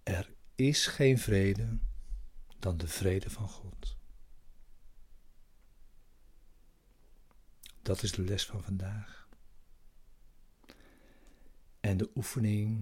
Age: 60-79